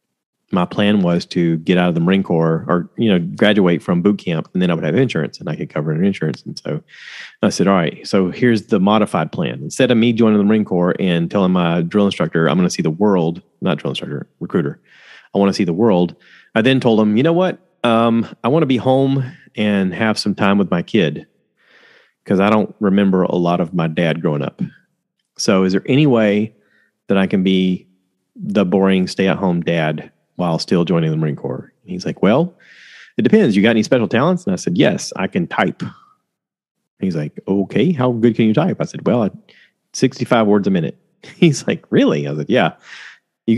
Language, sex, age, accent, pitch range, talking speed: English, male, 30-49, American, 95-135 Hz, 220 wpm